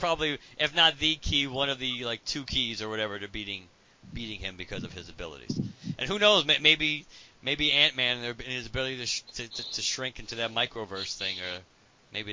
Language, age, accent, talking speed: English, 40-59, American, 205 wpm